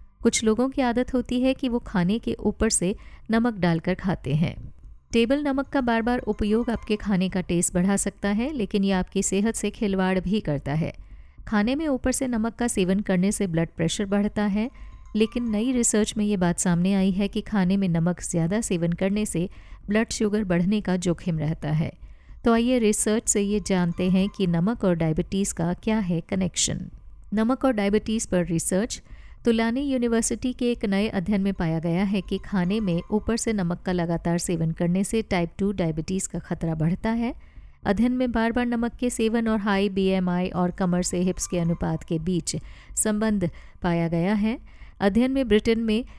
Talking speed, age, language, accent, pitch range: 195 wpm, 50-69, Hindi, native, 180-225 Hz